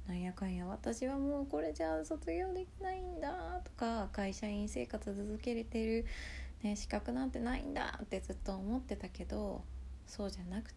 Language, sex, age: Japanese, female, 20-39